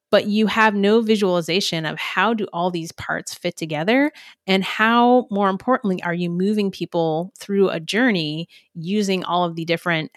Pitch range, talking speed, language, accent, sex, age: 180-240 Hz, 170 wpm, English, American, female, 30-49